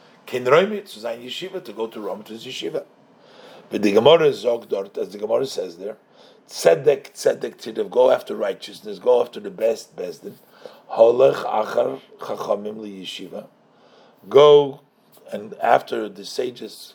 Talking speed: 105 wpm